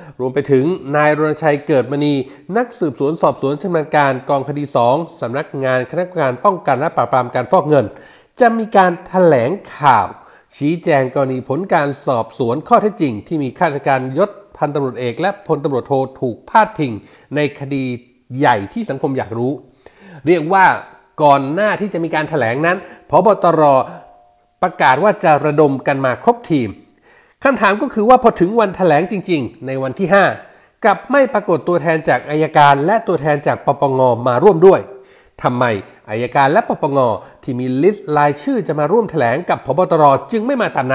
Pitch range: 140-190 Hz